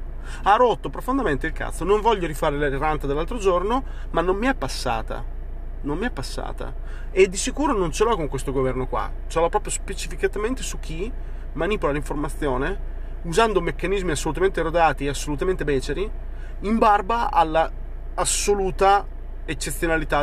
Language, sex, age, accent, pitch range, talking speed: Italian, male, 30-49, native, 120-160 Hz, 150 wpm